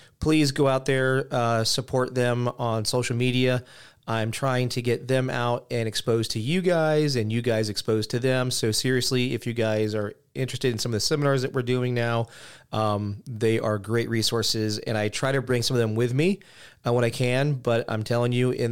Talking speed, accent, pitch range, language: 215 wpm, American, 110-130 Hz, English